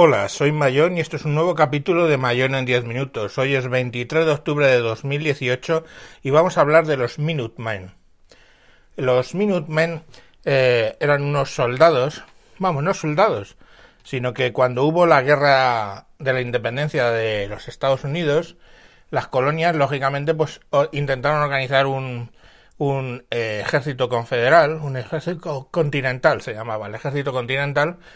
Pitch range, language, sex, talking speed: 125-160 Hz, Spanish, male, 145 wpm